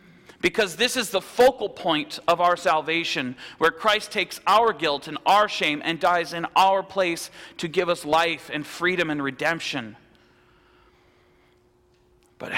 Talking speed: 150 wpm